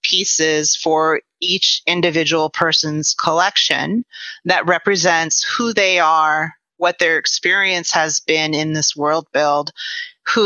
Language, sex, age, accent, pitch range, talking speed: English, female, 30-49, American, 150-170 Hz, 120 wpm